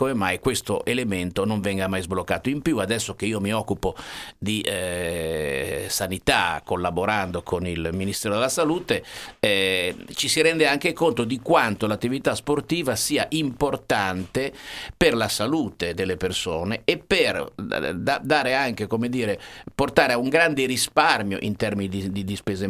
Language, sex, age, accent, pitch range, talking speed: Italian, male, 50-69, native, 100-130 Hz, 160 wpm